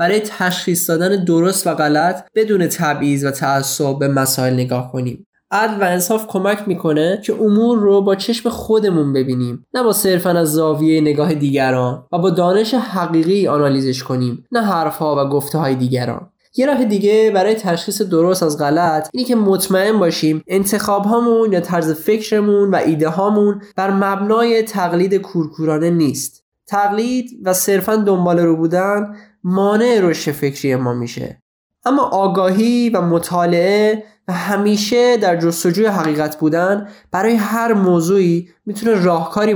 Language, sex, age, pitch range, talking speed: Persian, male, 10-29, 165-210 Hz, 145 wpm